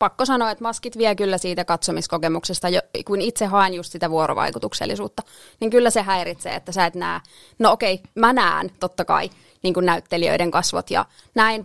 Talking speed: 175 wpm